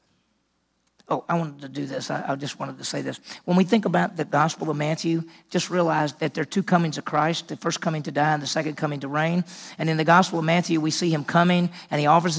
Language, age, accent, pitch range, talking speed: English, 50-69, American, 150-180 Hz, 255 wpm